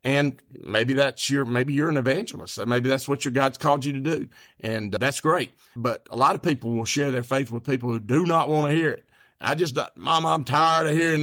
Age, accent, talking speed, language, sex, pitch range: 50-69, American, 245 wpm, English, male, 115-140 Hz